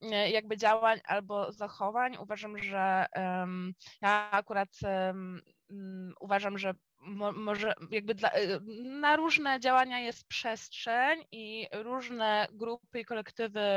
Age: 20-39